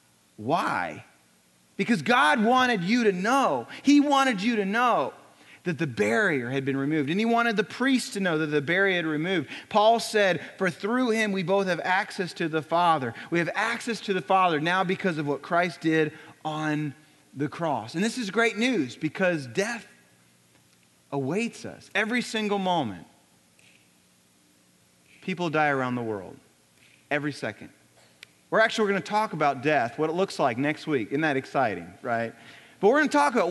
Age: 30-49